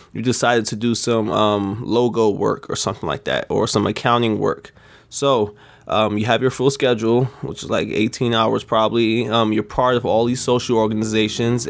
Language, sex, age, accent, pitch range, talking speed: English, male, 20-39, American, 110-130 Hz, 190 wpm